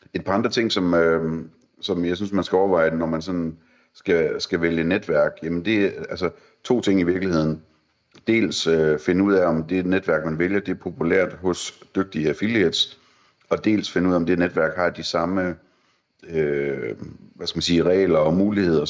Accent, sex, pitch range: native, male, 80-95 Hz